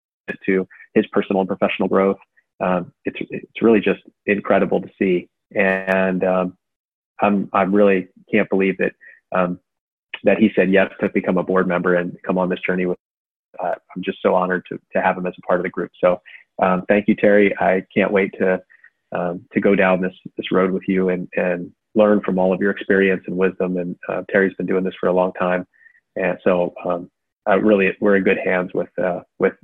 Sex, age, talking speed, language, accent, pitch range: male, 30-49, 210 wpm, English, American, 90-100 Hz